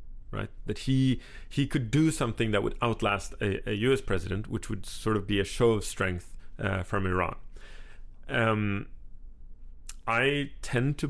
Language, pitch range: English, 100-120 Hz